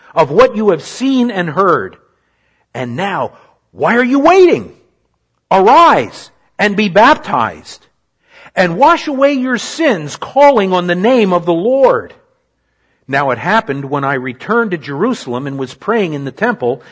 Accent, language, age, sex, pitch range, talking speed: American, English, 50-69, male, 145-225 Hz, 155 wpm